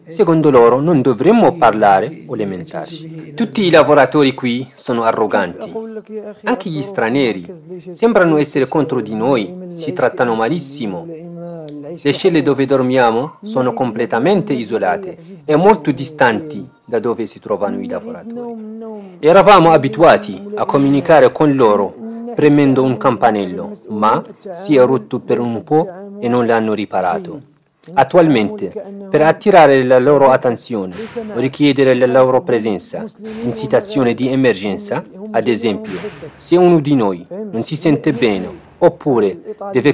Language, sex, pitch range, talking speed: Italian, male, 130-190 Hz, 130 wpm